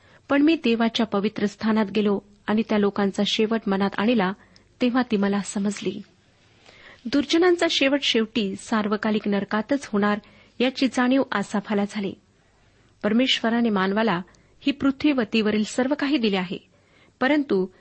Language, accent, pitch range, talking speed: Marathi, native, 205-255 Hz, 120 wpm